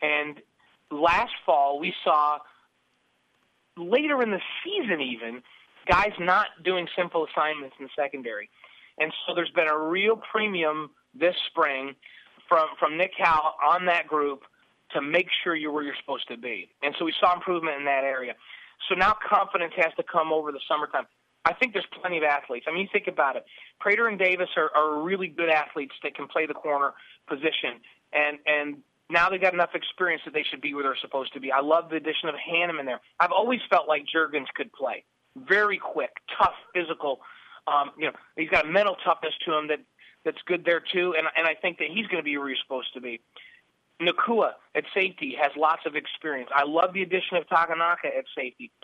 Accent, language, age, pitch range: American, English, 30-49, 150-180 Hz